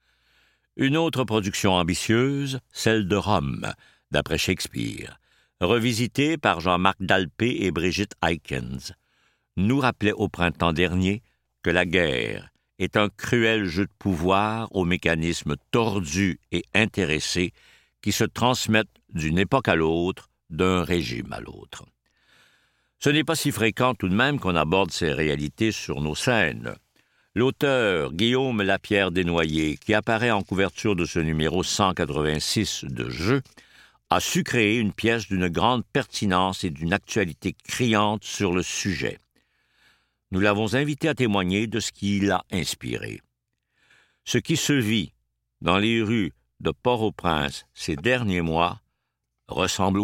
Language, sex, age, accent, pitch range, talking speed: French, male, 60-79, French, 90-115 Hz, 135 wpm